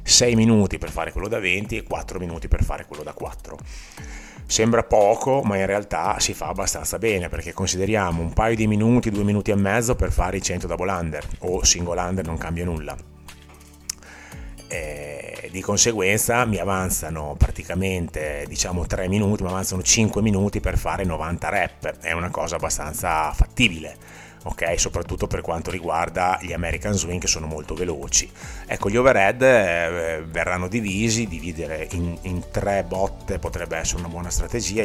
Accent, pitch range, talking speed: native, 80-100 Hz, 165 wpm